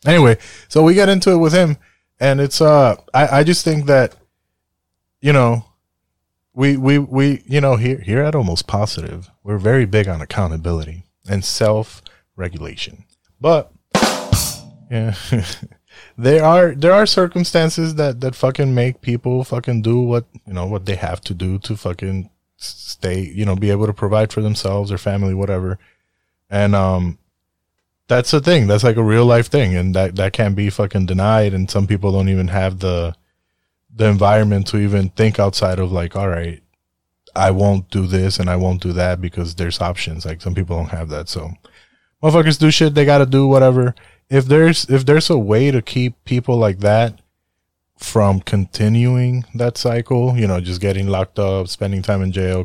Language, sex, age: English, male, 30-49